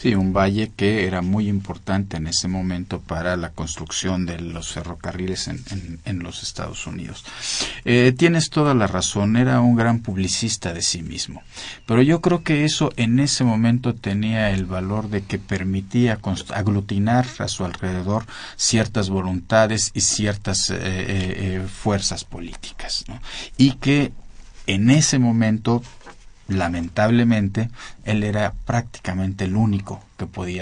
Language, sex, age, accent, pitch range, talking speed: Spanish, male, 50-69, Mexican, 95-115 Hz, 150 wpm